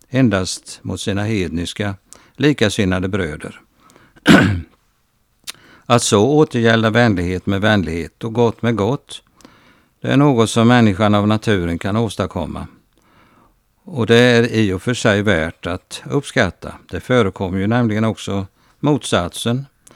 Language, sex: Swedish, male